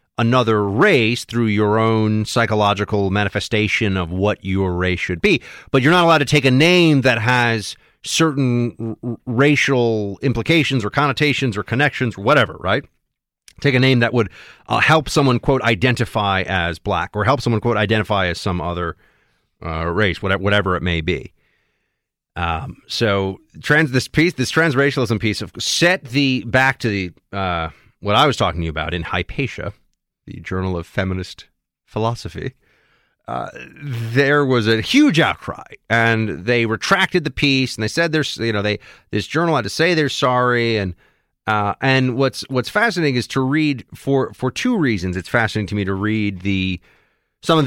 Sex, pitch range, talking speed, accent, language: male, 105-135 Hz, 170 wpm, American, English